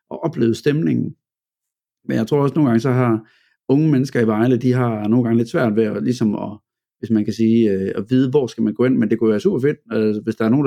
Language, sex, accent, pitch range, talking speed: Danish, male, native, 110-130 Hz, 265 wpm